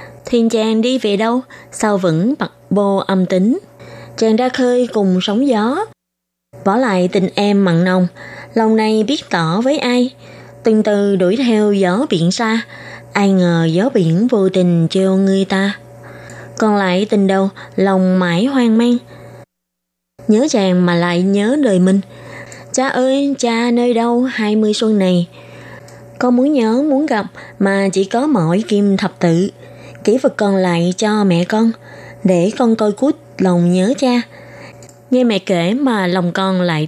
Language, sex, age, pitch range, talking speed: Vietnamese, female, 20-39, 180-235 Hz, 165 wpm